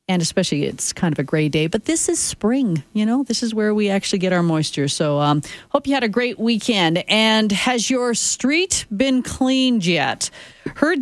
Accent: American